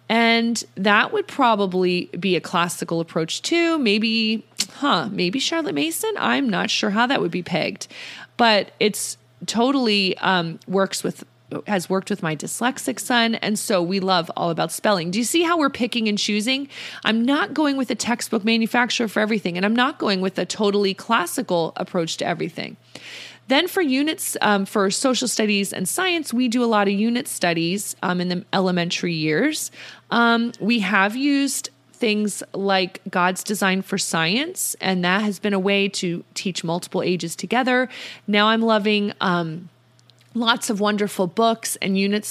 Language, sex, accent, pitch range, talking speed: English, female, American, 185-240 Hz, 170 wpm